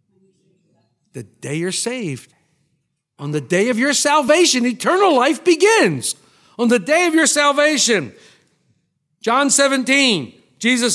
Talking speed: 120 wpm